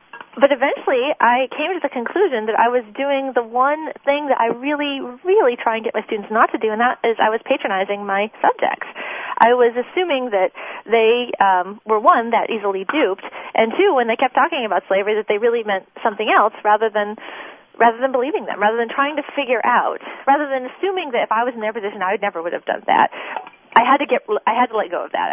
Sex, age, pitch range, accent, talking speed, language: female, 30-49, 210-275 Hz, American, 235 wpm, English